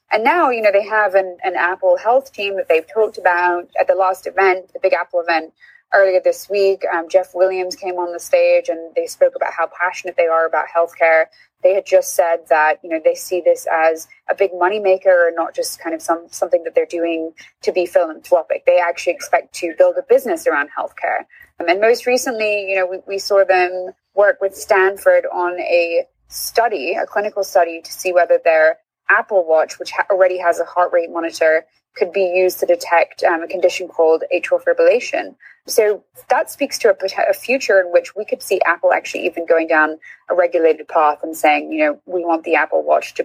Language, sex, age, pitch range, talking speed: English, female, 20-39, 170-215 Hz, 210 wpm